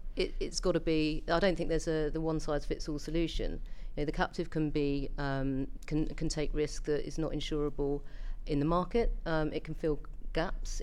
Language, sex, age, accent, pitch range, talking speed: English, female, 40-59, British, 140-165 Hz, 215 wpm